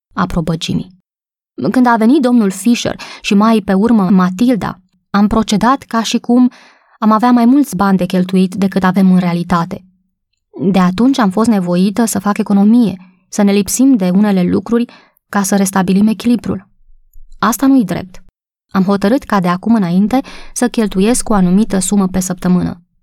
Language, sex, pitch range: Romanian, female, 180-220 Hz